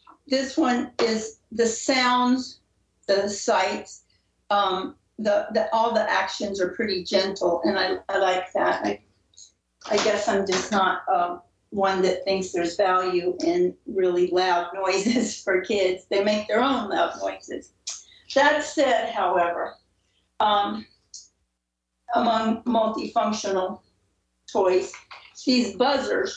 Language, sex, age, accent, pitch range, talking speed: English, female, 50-69, American, 180-245 Hz, 120 wpm